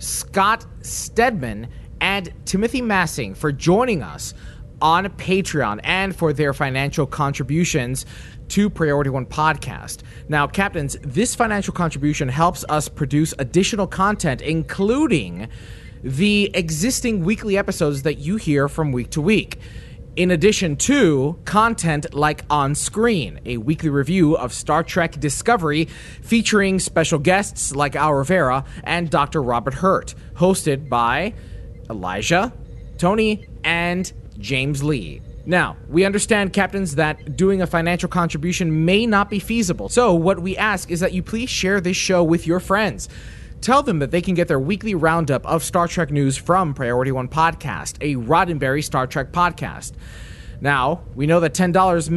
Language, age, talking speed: English, 30-49, 145 wpm